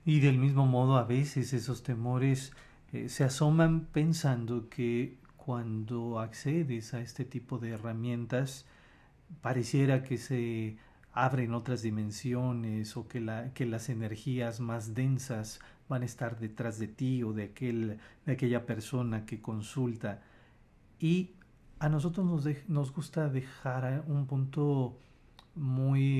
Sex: male